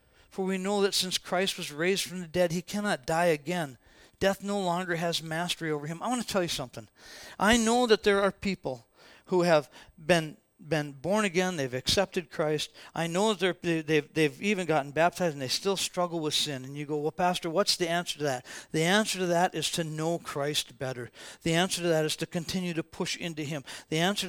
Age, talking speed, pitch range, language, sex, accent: 50-69, 220 wpm, 175-245 Hz, English, male, American